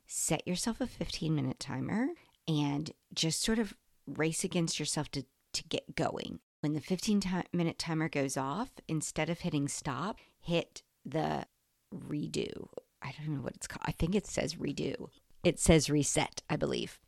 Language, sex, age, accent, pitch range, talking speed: English, female, 50-69, American, 145-180 Hz, 160 wpm